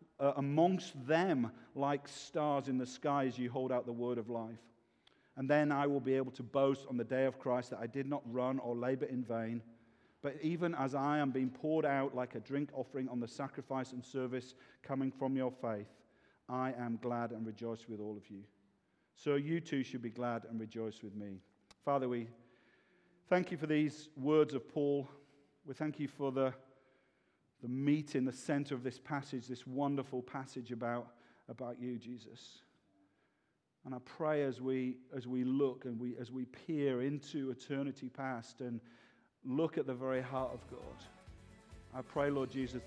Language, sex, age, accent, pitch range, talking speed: English, male, 50-69, British, 120-145 Hz, 190 wpm